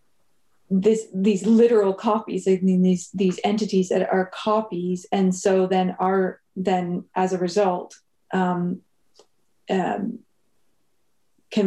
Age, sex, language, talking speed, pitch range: 30-49, female, English, 120 wpm, 185-215 Hz